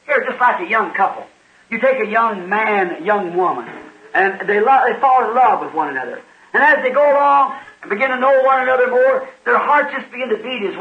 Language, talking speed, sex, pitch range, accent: English, 235 wpm, male, 245-305 Hz, American